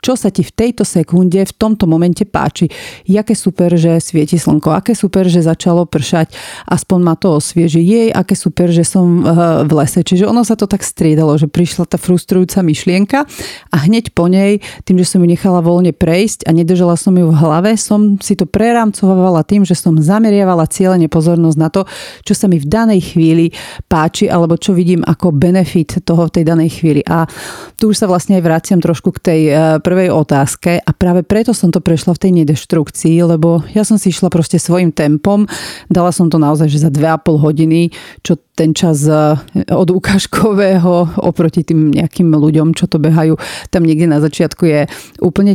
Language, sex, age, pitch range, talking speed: Slovak, female, 40-59, 165-190 Hz, 190 wpm